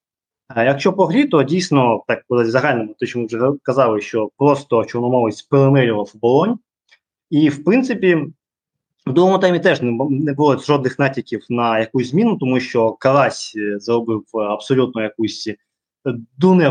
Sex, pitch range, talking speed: male, 120-150 Hz, 145 wpm